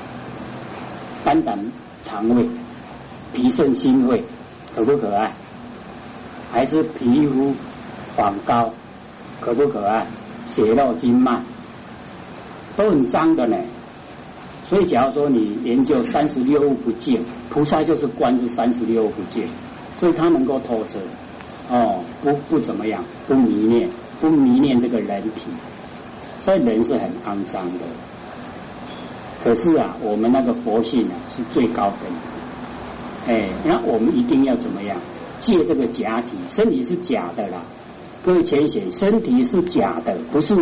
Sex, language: male, Chinese